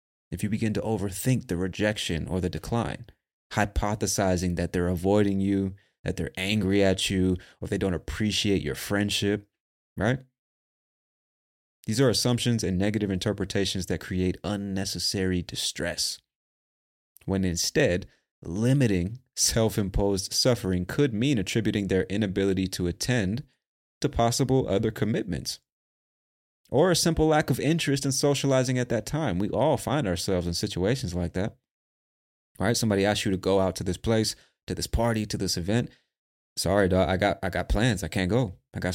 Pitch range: 95-120 Hz